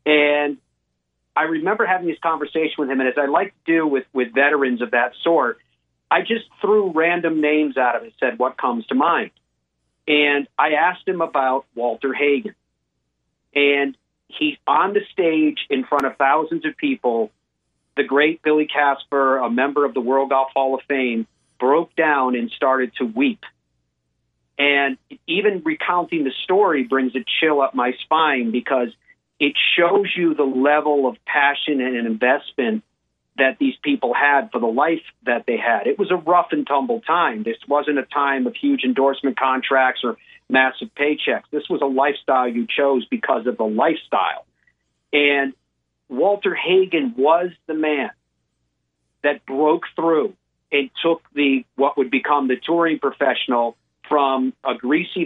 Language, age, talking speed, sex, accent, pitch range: English, 50-69, 165 wpm, male, American, 125-155 Hz